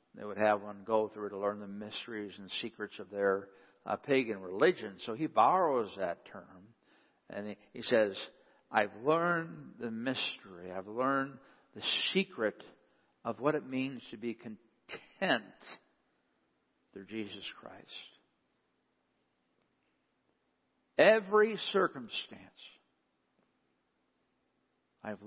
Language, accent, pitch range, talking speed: English, American, 105-150 Hz, 110 wpm